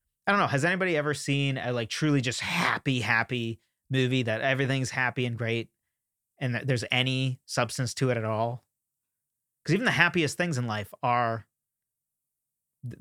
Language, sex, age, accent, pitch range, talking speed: English, male, 30-49, American, 120-145 Hz, 170 wpm